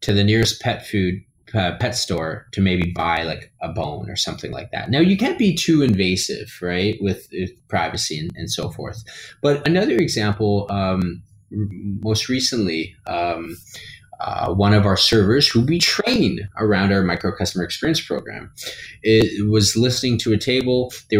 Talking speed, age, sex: 175 wpm, 20-39, male